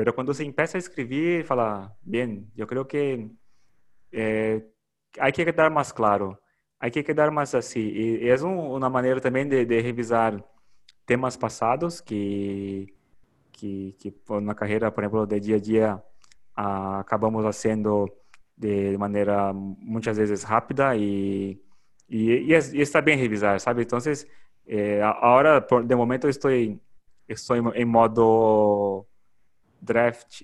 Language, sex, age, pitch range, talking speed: English, male, 20-39, 105-130 Hz, 150 wpm